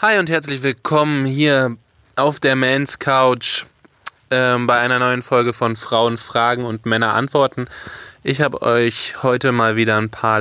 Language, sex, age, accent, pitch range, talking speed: German, male, 20-39, German, 110-135 Hz, 160 wpm